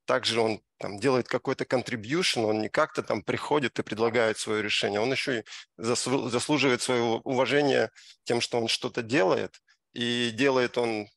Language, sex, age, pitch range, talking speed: Russian, male, 20-39, 115-130 Hz, 150 wpm